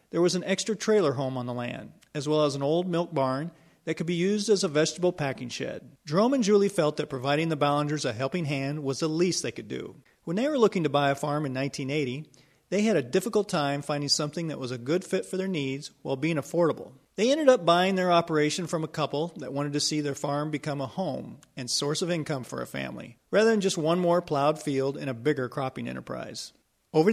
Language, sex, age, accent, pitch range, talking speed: English, male, 40-59, American, 135-175 Hz, 240 wpm